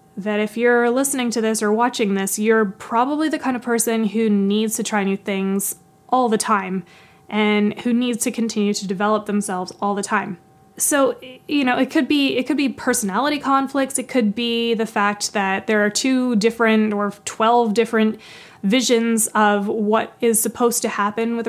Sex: female